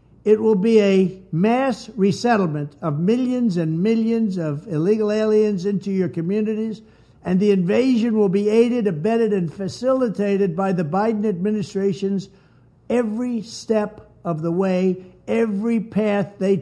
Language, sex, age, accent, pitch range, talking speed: English, male, 60-79, American, 185-235 Hz, 135 wpm